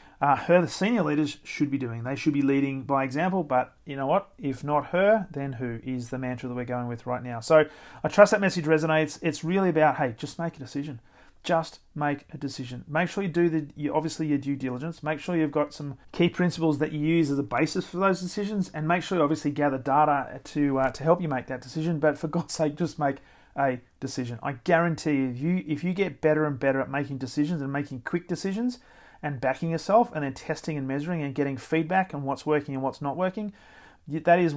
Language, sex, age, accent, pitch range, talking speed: English, male, 40-59, Australian, 135-165 Hz, 235 wpm